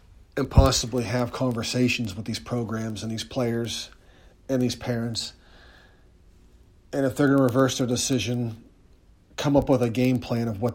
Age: 40-59